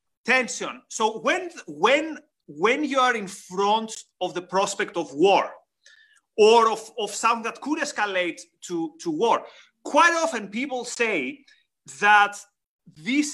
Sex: male